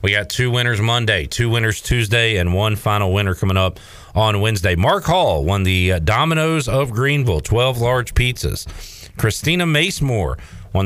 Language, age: English, 40-59